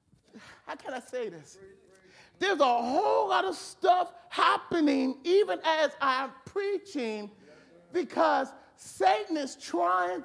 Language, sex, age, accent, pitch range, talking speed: English, male, 50-69, American, 240-340 Hz, 115 wpm